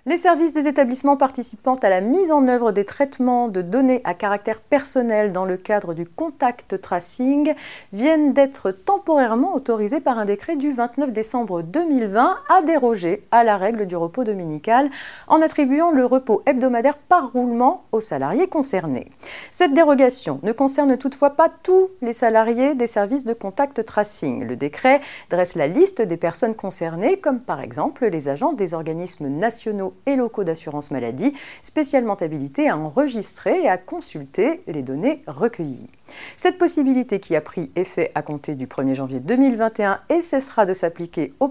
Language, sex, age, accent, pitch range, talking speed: French, female, 40-59, French, 190-290 Hz, 165 wpm